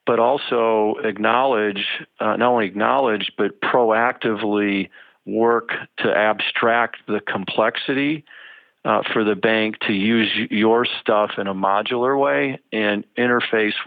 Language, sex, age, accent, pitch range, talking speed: English, male, 50-69, American, 100-115 Hz, 120 wpm